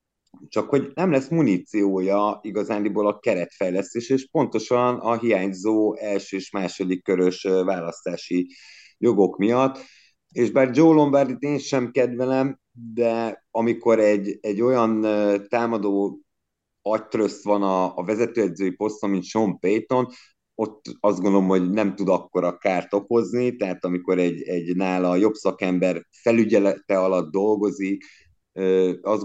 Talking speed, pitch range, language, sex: 125 wpm, 95-115 Hz, Hungarian, male